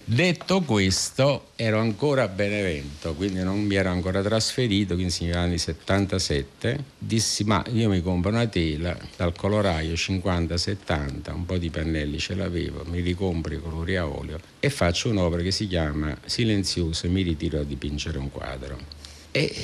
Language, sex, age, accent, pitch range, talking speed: Italian, male, 50-69, native, 80-100 Hz, 160 wpm